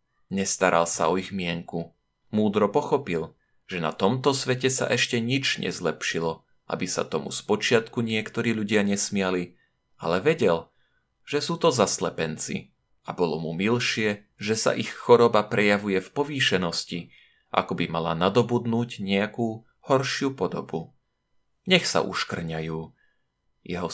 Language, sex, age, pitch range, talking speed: Slovak, male, 30-49, 95-125 Hz, 125 wpm